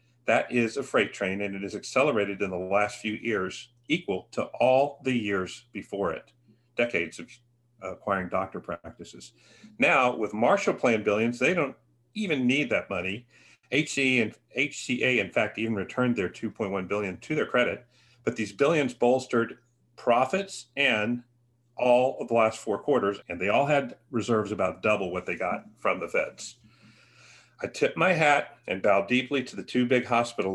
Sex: male